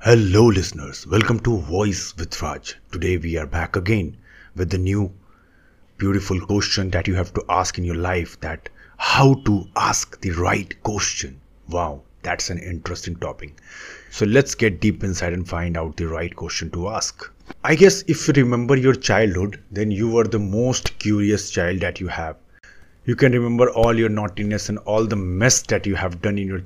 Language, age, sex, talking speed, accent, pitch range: Hindi, 30-49, male, 185 wpm, native, 90-115 Hz